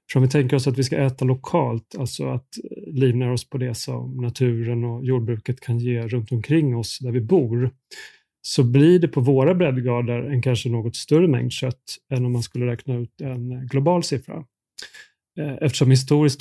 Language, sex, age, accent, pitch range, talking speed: Swedish, male, 30-49, native, 120-140 Hz, 185 wpm